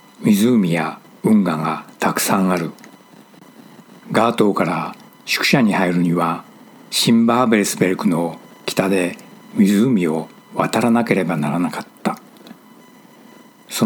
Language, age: Japanese, 60-79